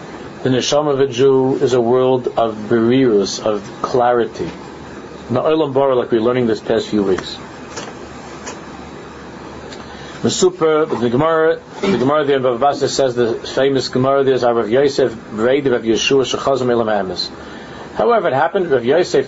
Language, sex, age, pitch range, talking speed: English, male, 50-69, 120-160 Hz, 115 wpm